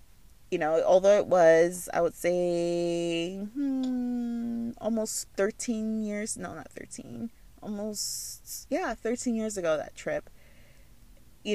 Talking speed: 120 wpm